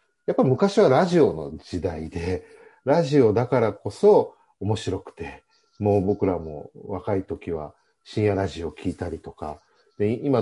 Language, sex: Japanese, male